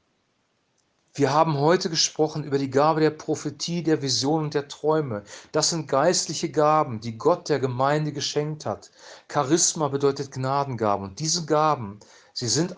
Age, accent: 40-59, German